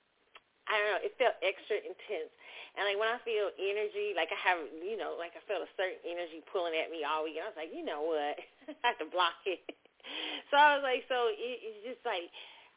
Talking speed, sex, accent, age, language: 235 wpm, female, American, 40-59, English